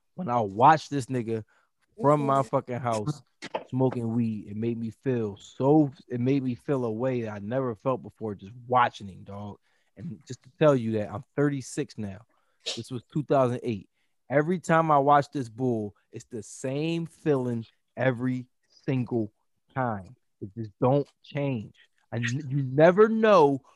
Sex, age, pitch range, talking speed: male, 20-39, 110-135 Hz, 160 wpm